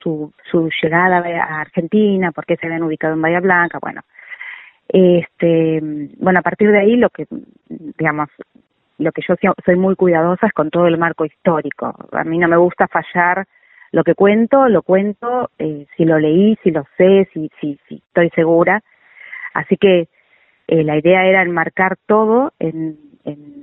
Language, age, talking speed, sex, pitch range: Spanish, 30-49, 175 wpm, female, 160-195 Hz